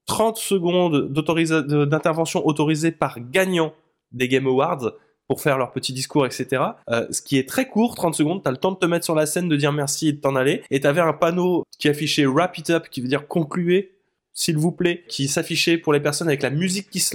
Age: 20-39